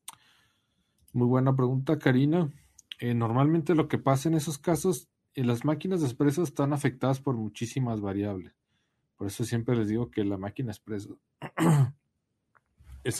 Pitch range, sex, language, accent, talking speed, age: 105-130 Hz, male, Spanish, Mexican, 140 wpm, 40-59